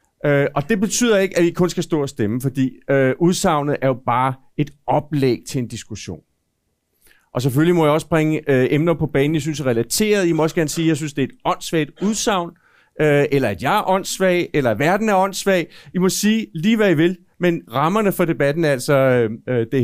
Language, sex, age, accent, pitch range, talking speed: Danish, male, 40-59, native, 145-190 Hz, 240 wpm